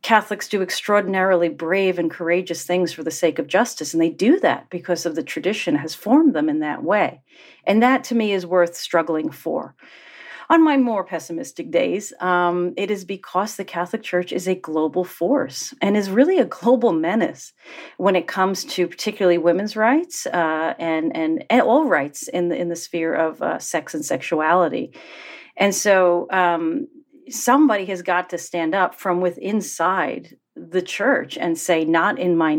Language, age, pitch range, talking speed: English, 40-59, 170-225 Hz, 180 wpm